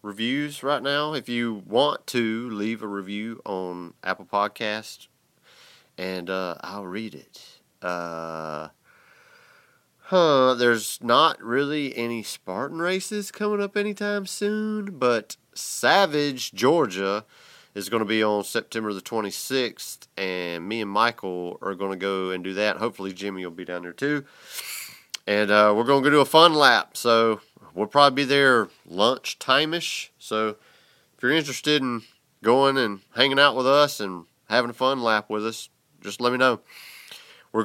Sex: male